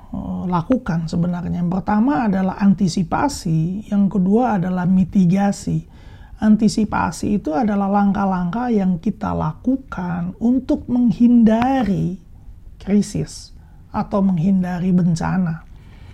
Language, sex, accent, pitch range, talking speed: Indonesian, male, native, 180-225 Hz, 85 wpm